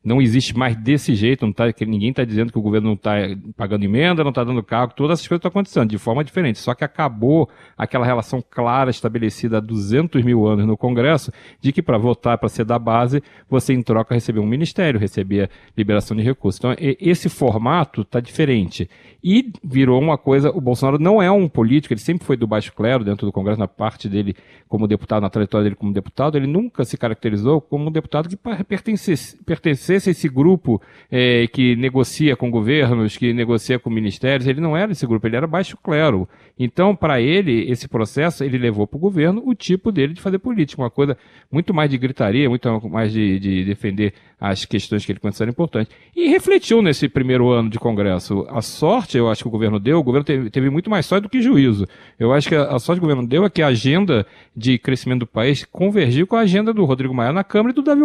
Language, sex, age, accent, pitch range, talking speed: Portuguese, male, 40-59, Brazilian, 110-160 Hz, 215 wpm